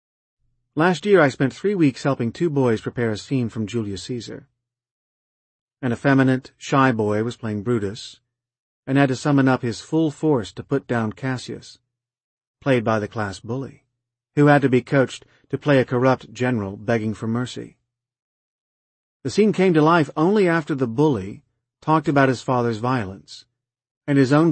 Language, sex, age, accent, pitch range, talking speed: English, male, 40-59, American, 115-140 Hz, 170 wpm